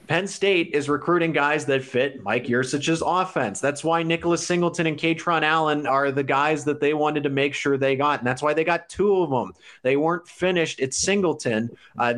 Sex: male